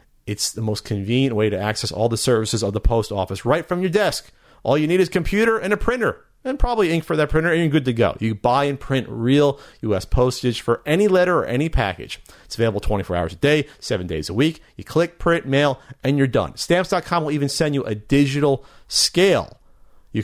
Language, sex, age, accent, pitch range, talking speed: English, male, 40-59, American, 110-160 Hz, 230 wpm